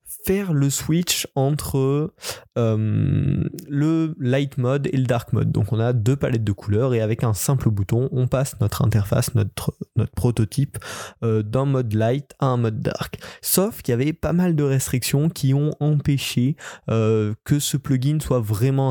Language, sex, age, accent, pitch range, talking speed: French, male, 20-39, French, 115-140 Hz, 180 wpm